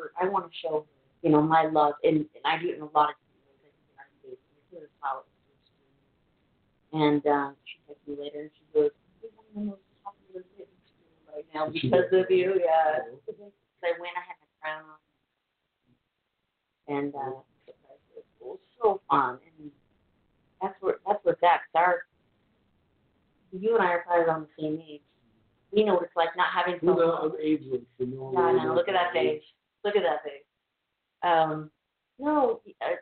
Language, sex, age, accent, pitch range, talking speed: English, female, 40-59, American, 150-225 Hz, 160 wpm